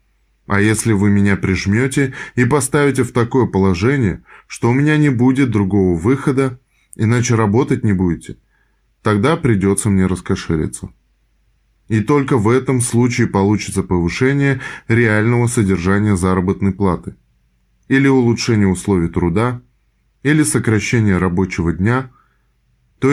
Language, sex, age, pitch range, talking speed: Russian, male, 20-39, 100-130 Hz, 115 wpm